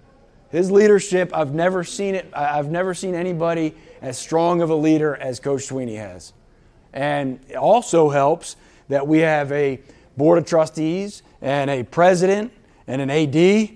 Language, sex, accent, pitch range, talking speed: English, male, American, 140-175 Hz, 155 wpm